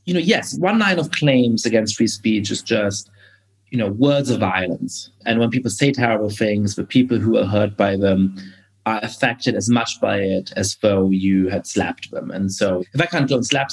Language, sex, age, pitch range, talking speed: English, male, 30-49, 100-135 Hz, 220 wpm